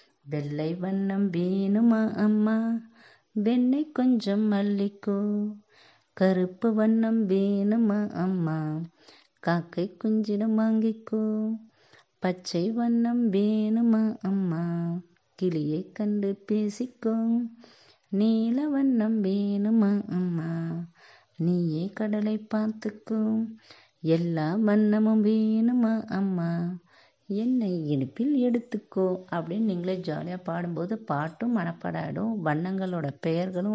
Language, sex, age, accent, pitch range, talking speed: Tamil, female, 30-49, native, 170-220 Hz, 75 wpm